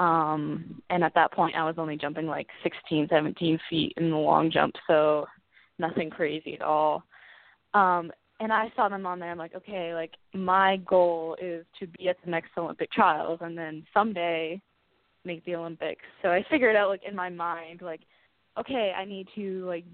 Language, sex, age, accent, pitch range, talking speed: English, female, 20-39, American, 170-195 Hz, 190 wpm